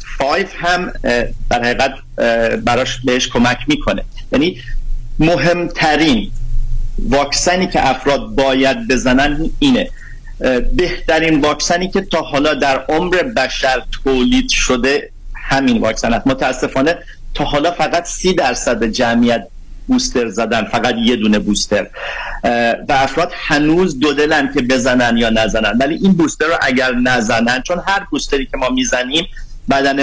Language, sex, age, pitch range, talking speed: Persian, male, 50-69, 125-155 Hz, 125 wpm